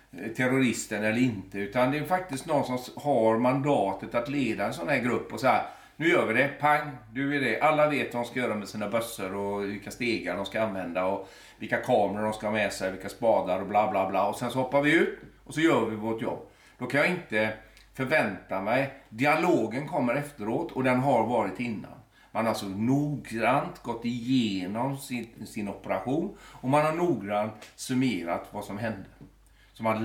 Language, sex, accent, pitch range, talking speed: Swedish, male, native, 105-140 Hz, 200 wpm